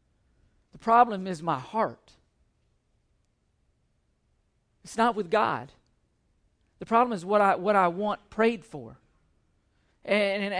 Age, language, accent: 50-69, English, American